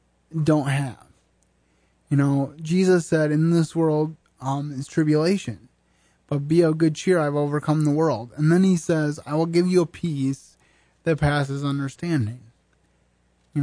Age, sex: 20-39, male